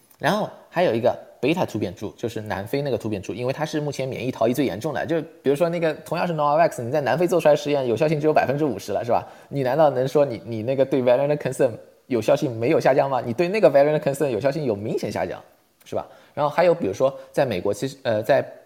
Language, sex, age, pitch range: Chinese, male, 20-39, 110-140 Hz